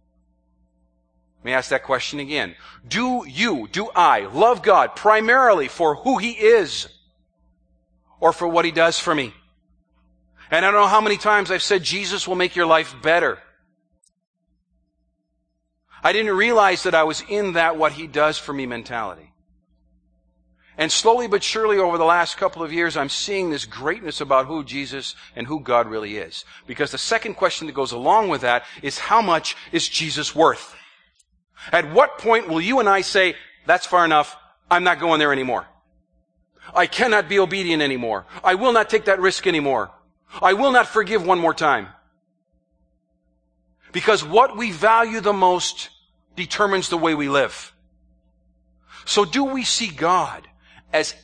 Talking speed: 165 wpm